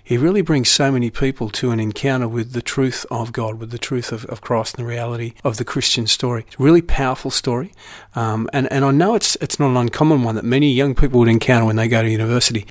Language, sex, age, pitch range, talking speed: English, male, 50-69, 115-140 Hz, 255 wpm